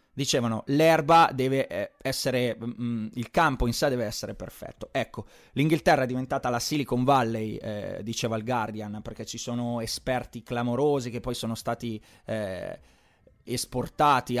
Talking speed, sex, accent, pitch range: 135 wpm, male, native, 115-140 Hz